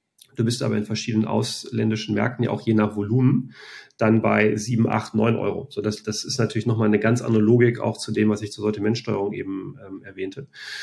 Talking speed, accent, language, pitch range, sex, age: 210 wpm, German, German, 110-130 Hz, male, 30-49